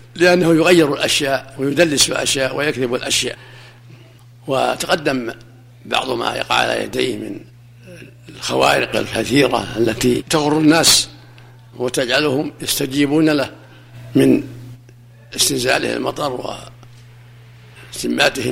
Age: 60-79